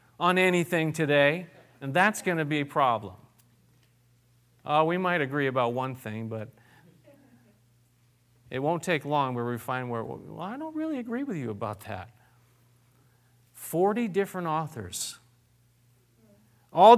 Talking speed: 140 wpm